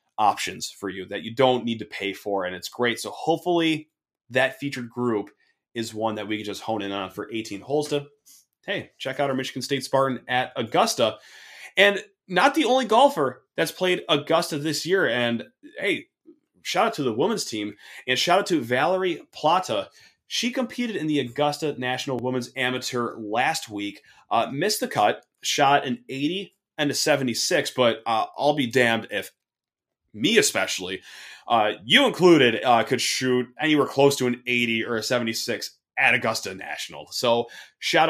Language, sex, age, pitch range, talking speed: English, male, 30-49, 115-155 Hz, 175 wpm